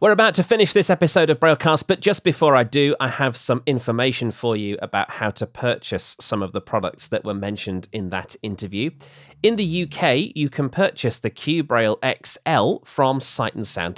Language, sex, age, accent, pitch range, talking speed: English, male, 30-49, British, 105-150 Hz, 200 wpm